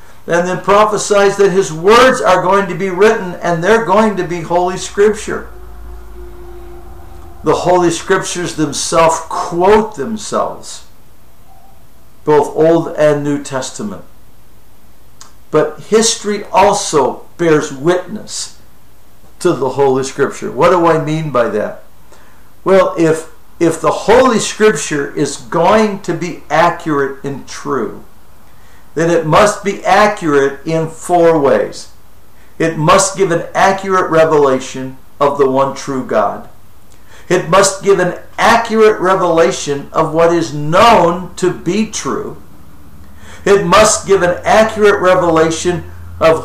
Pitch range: 145-195 Hz